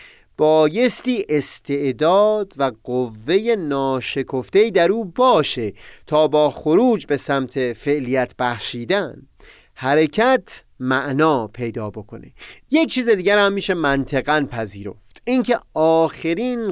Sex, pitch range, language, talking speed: male, 130-205 Hz, Persian, 100 wpm